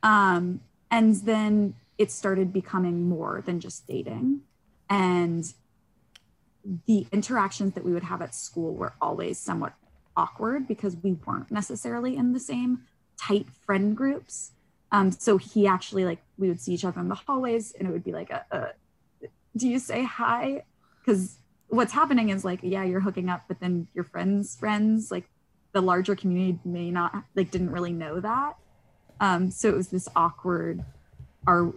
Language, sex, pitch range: English, female, 170-215 Hz